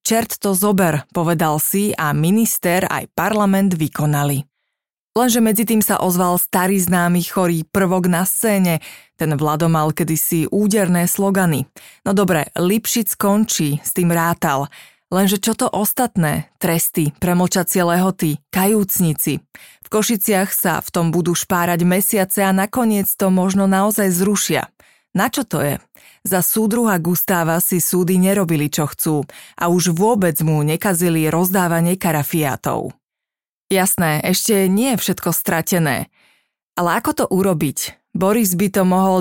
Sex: female